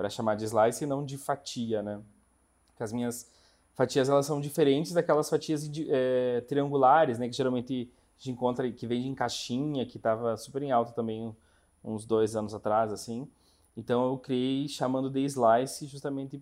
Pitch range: 115-145 Hz